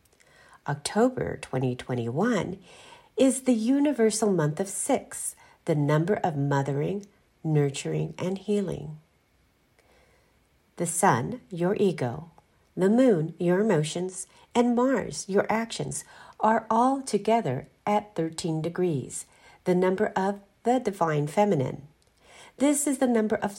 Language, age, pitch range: English, 50-69, 160-230 Hz